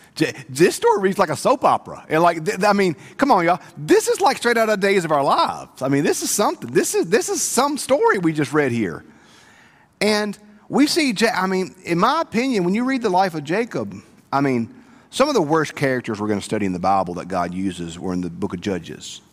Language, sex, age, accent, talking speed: English, male, 40-59, American, 240 wpm